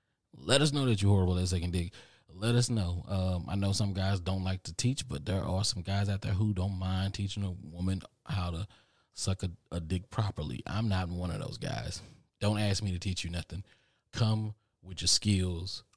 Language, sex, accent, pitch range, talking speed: English, male, American, 90-105 Hz, 220 wpm